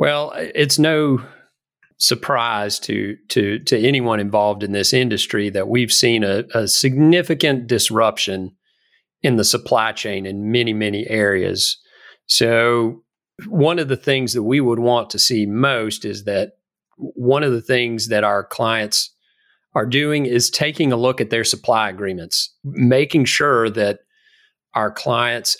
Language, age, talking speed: English, 40-59, 150 wpm